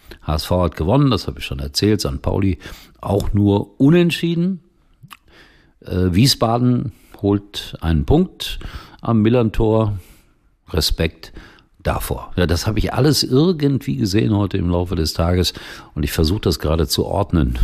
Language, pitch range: German, 80-105 Hz